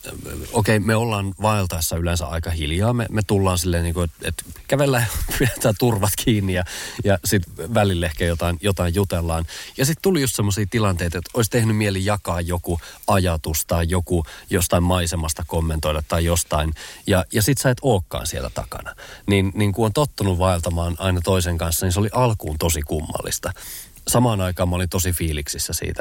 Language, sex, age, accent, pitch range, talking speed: Finnish, male, 30-49, native, 80-100 Hz, 175 wpm